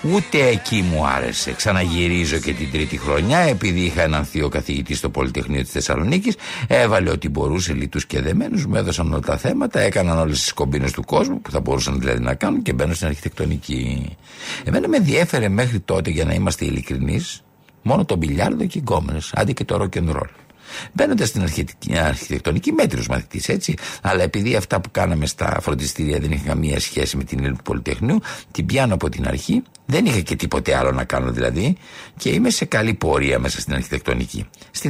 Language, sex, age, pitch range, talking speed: Greek, male, 60-79, 70-105 Hz, 185 wpm